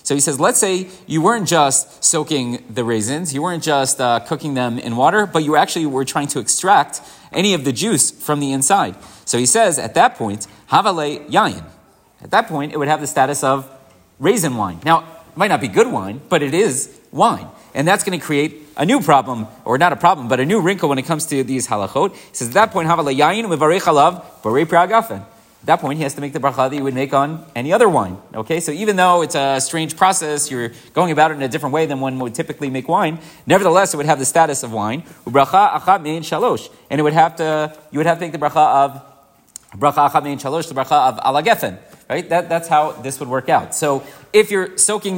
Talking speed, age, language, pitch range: 240 wpm, 40-59, English, 135-165 Hz